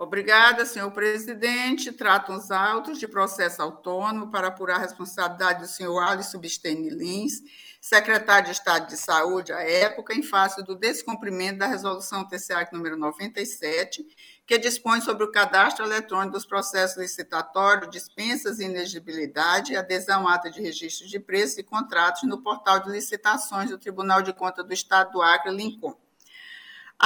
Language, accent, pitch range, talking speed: Portuguese, Brazilian, 185-230 Hz, 155 wpm